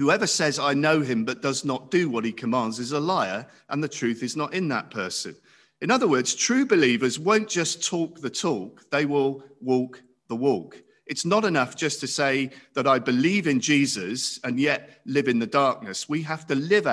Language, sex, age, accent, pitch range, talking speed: English, male, 50-69, British, 115-155 Hz, 210 wpm